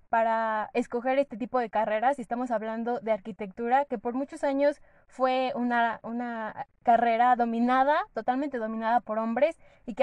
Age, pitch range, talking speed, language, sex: 10-29, 225-275 Hz, 155 wpm, Spanish, female